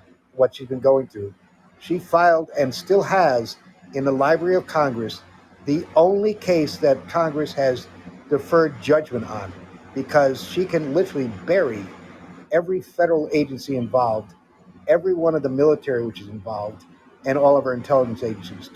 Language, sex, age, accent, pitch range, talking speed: English, male, 50-69, American, 125-155 Hz, 150 wpm